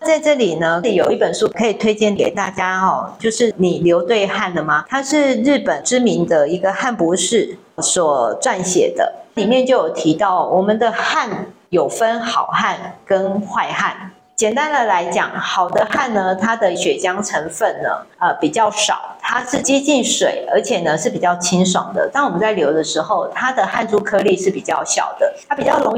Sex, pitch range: female, 185-275 Hz